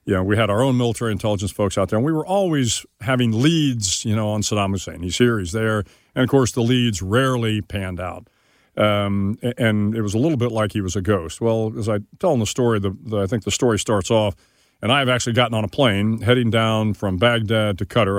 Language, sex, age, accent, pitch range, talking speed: English, male, 50-69, American, 105-130 Hz, 245 wpm